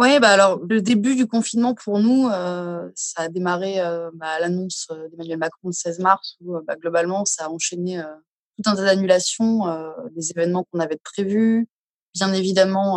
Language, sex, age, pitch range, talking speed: French, female, 20-39, 170-220 Hz, 190 wpm